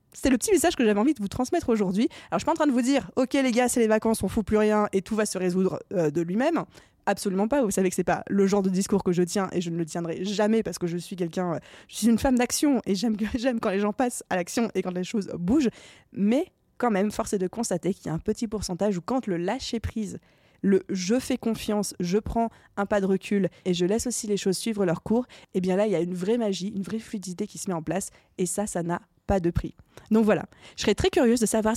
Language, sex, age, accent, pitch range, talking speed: French, female, 20-39, French, 185-235 Hz, 290 wpm